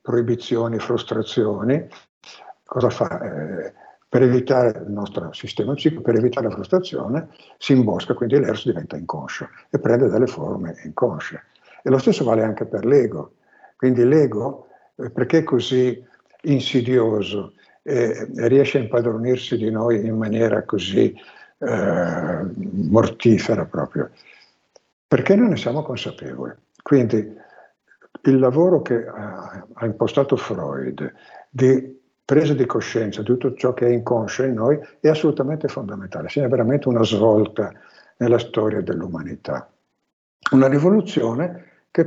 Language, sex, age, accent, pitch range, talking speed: Italian, male, 60-79, native, 110-135 Hz, 130 wpm